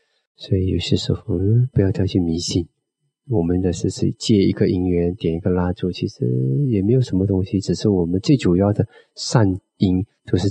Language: Chinese